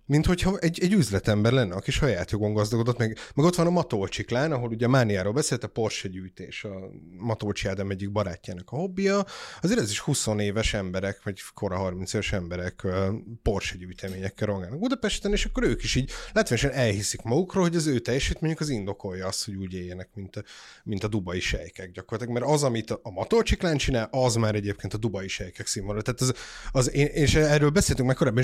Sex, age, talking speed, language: male, 30-49, 190 wpm, Hungarian